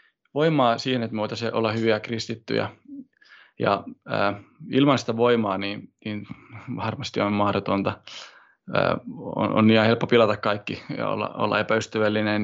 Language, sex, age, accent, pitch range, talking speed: Finnish, male, 20-39, native, 110-130 Hz, 140 wpm